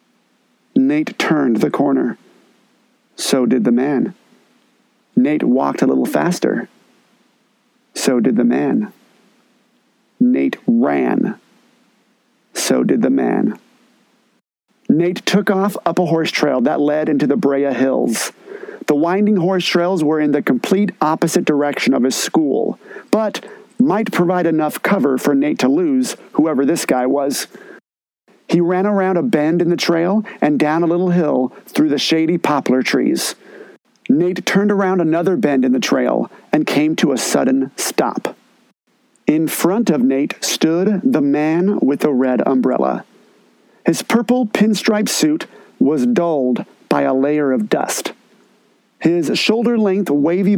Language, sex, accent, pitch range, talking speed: English, male, American, 155-235 Hz, 140 wpm